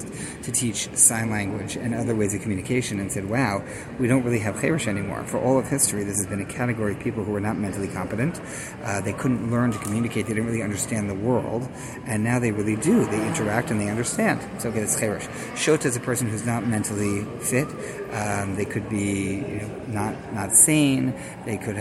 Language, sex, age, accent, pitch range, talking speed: English, male, 30-49, American, 105-130 Hz, 215 wpm